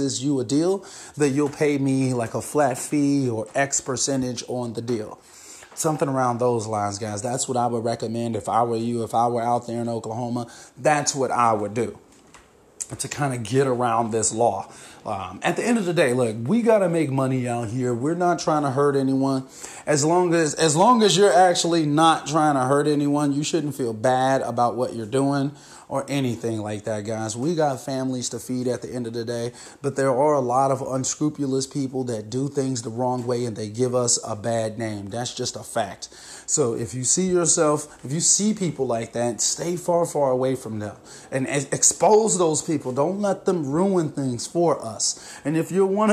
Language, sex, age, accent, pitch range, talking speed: English, male, 30-49, American, 120-155 Hz, 215 wpm